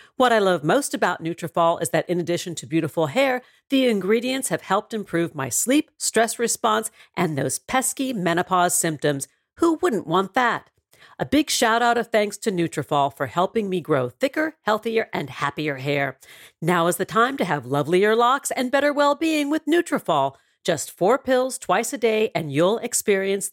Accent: American